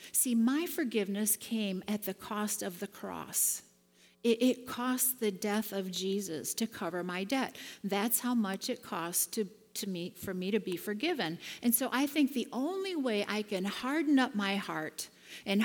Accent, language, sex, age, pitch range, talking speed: American, English, female, 50-69, 190-245 Hz, 185 wpm